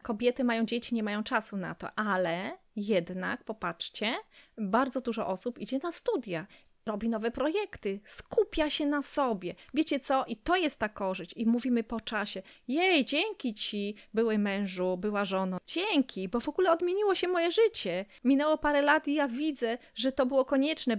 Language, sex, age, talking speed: Polish, female, 30-49, 170 wpm